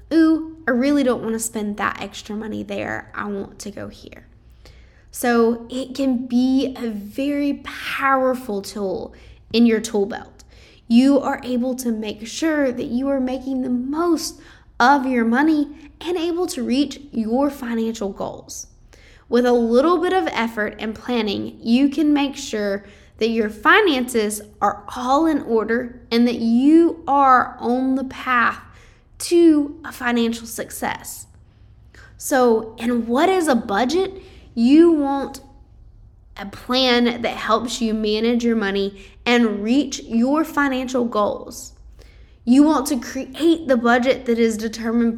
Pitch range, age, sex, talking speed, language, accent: 225-275 Hz, 10-29, female, 145 wpm, English, American